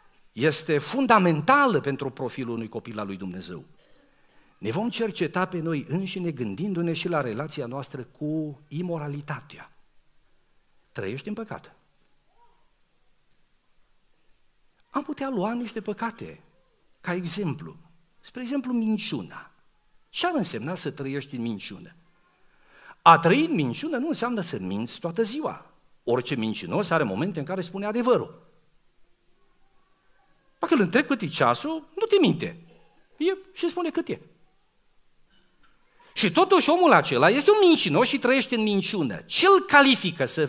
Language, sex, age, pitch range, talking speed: Romanian, male, 50-69, 145-240 Hz, 130 wpm